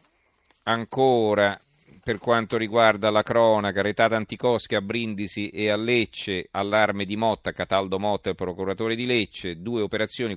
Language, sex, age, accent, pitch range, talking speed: Italian, male, 40-59, native, 95-115 Hz, 140 wpm